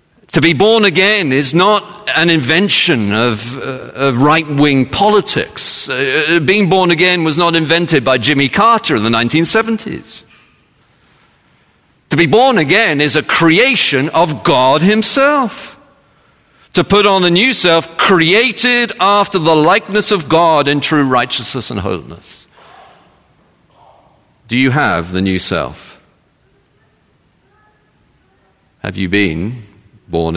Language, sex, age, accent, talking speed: English, male, 50-69, British, 125 wpm